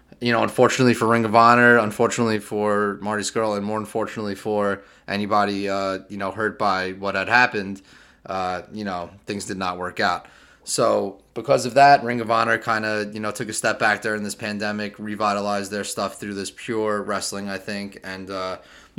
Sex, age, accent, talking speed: male, 20-39, American, 195 wpm